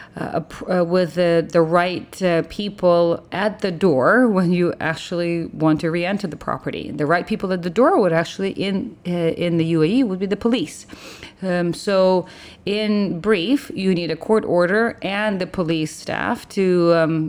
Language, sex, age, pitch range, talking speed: English, female, 30-49, 160-195 Hz, 180 wpm